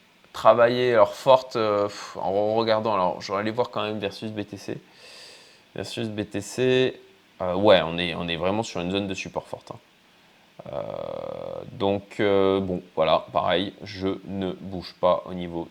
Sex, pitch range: male, 95-125 Hz